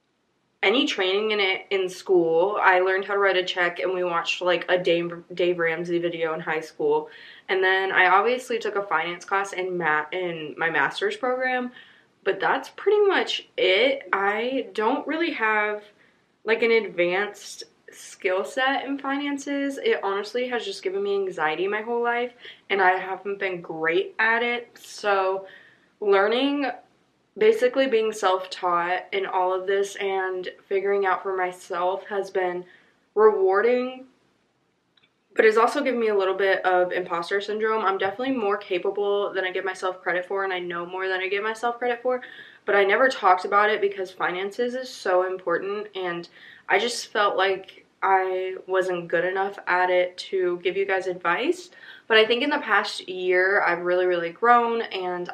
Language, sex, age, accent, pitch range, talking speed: English, female, 20-39, American, 185-240 Hz, 170 wpm